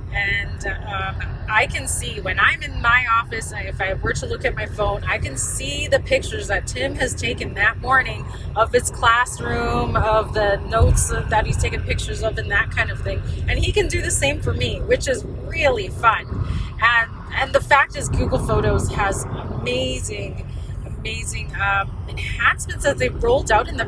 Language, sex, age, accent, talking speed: English, female, 30-49, American, 190 wpm